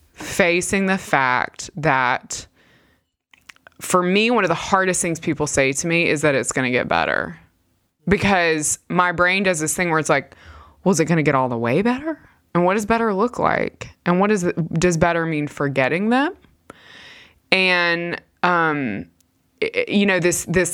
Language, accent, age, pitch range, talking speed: English, American, 20-39, 155-200 Hz, 175 wpm